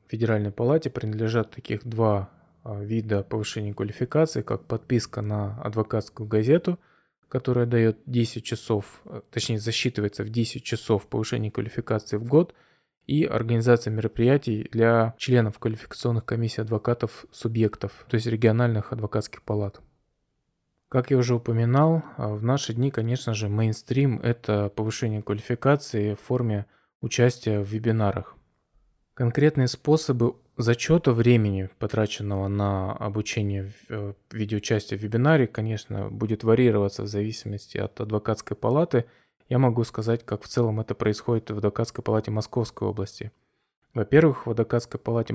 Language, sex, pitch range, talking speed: Russian, male, 105-120 Hz, 125 wpm